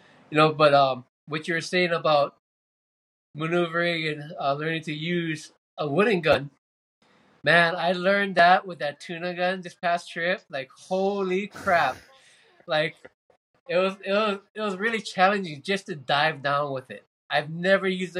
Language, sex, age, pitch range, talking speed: English, male, 20-39, 150-180 Hz, 170 wpm